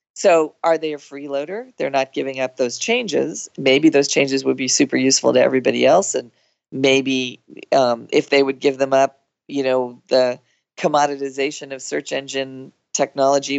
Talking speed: 170 wpm